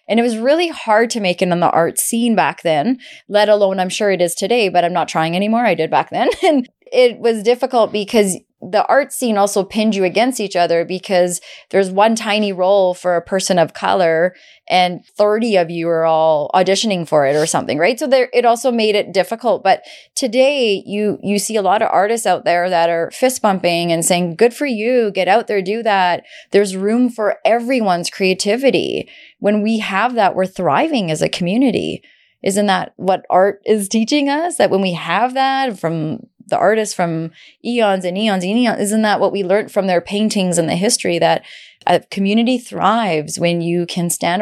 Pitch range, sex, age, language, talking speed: 180-230 Hz, female, 20-39, English, 205 wpm